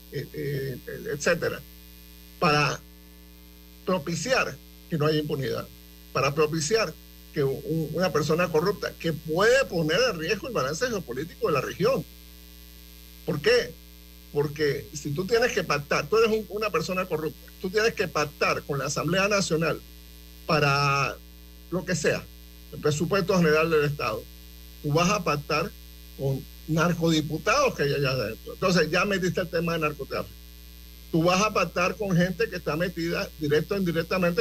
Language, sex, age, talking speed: Spanish, male, 50-69, 150 wpm